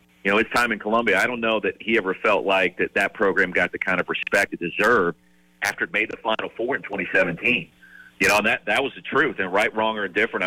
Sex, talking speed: male, 260 wpm